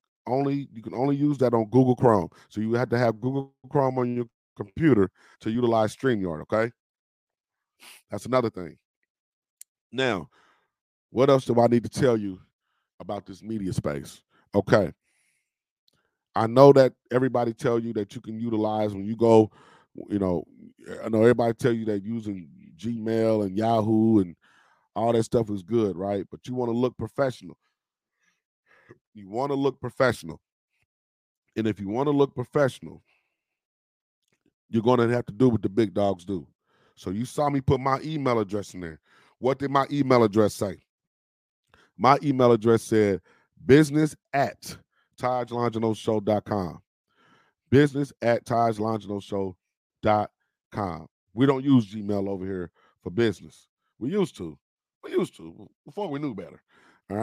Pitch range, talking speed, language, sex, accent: 105-130 Hz, 160 wpm, English, male, American